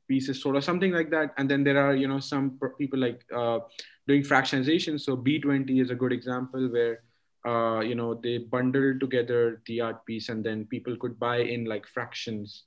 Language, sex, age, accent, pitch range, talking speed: English, male, 20-39, Indian, 115-135 Hz, 215 wpm